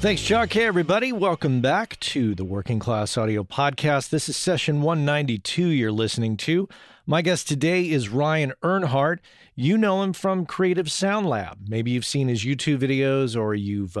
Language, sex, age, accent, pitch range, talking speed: English, male, 40-59, American, 105-150 Hz, 170 wpm